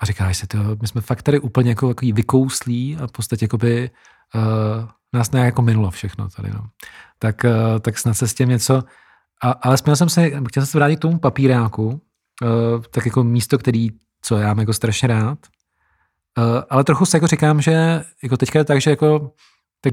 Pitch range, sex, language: 115-145 Hz, male, Czech